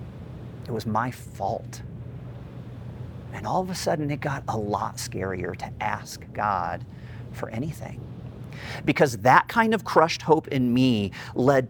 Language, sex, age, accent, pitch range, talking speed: English, male, 40-59, American, 120-155 Hz, 145 wpm